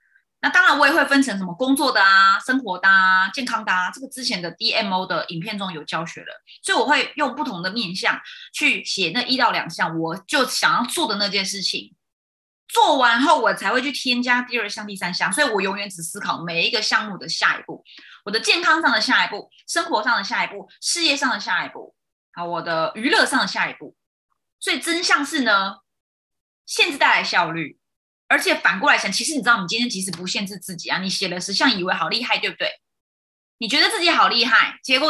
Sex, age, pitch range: female, 20-39, 195-290 Hz